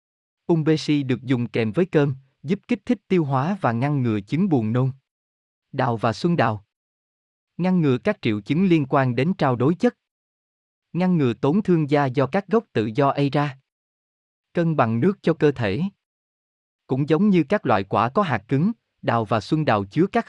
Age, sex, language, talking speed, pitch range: 20-39, male, Vietnamese, 190 wpm, 115-165 Hz